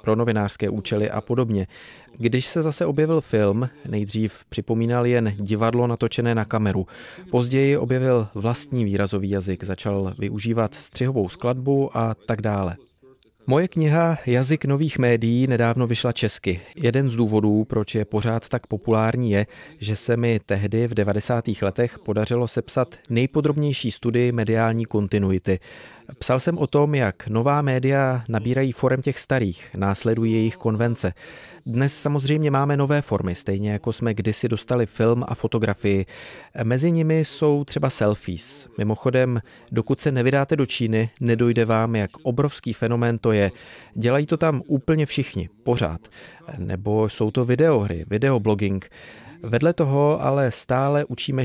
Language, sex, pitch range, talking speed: Czech, male, 105-130 Hz, 140 wpm